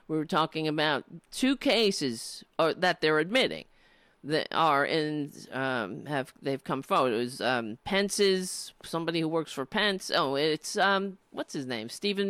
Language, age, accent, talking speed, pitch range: English, 40-59, American, 175 wpm, 145-205 Hz